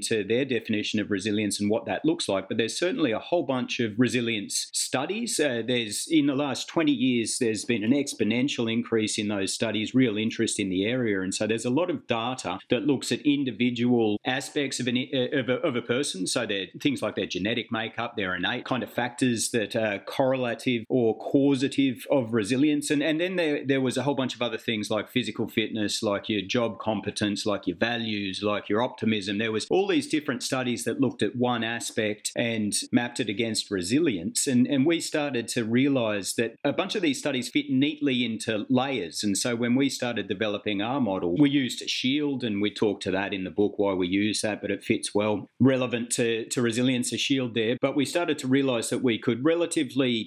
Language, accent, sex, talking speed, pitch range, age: English, Australian, male, 210 wpm, 105-130 Hz, 40-59